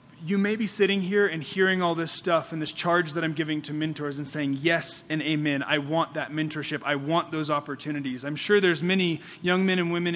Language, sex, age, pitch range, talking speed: English, male, 30-49, 150-180 Hz, 230 wpm